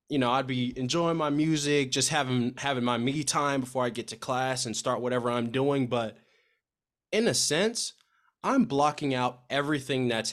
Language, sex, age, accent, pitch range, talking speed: English, male, 20-39, American, 115-140 Hz, 185 wpm